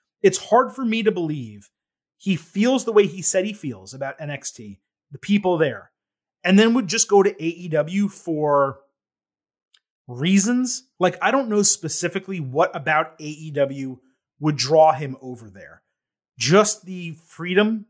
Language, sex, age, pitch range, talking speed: English, male, 30-49, 150-205 Hz, 150 wpm